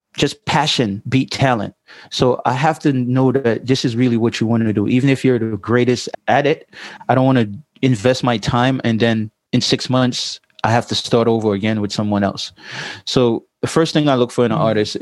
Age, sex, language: 30-49, male, English